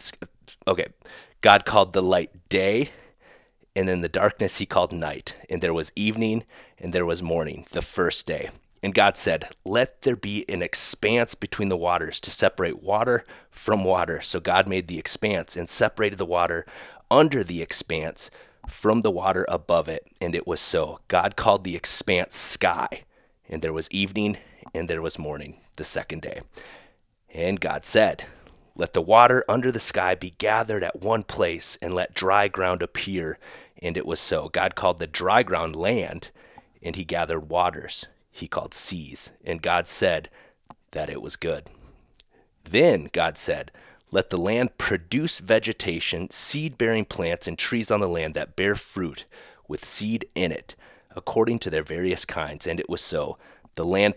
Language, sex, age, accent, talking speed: English, male, 30-49, American, 170 wpm